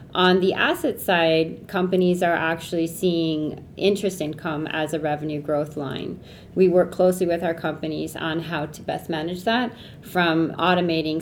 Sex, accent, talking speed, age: female, American, 155 wpm, 30-49